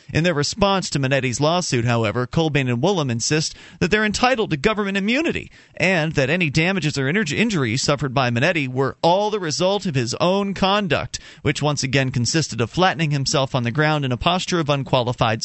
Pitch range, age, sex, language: 130-175 Hz, 40-59, male, English